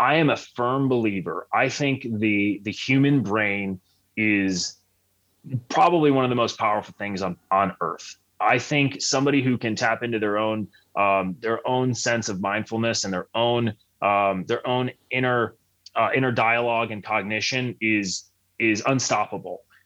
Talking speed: 155 wpm